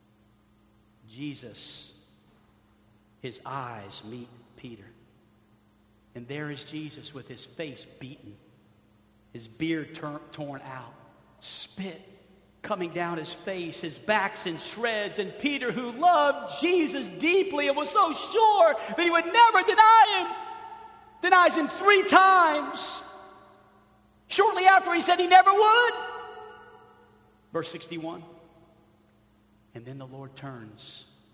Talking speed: 115 wpm